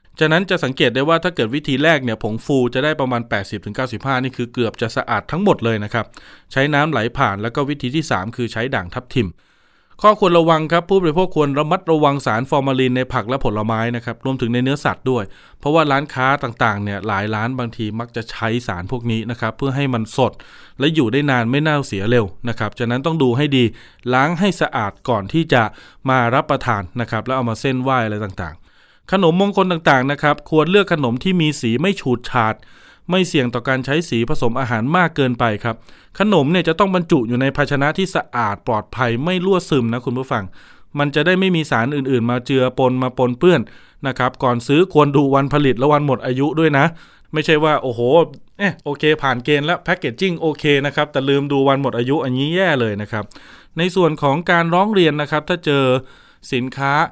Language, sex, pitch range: Thai, male, 120-155 Hz